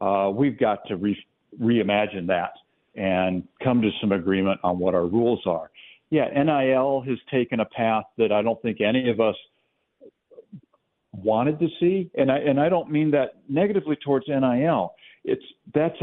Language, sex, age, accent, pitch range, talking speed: English, male, 60-79, American, 110-145 Hz, 170 wpm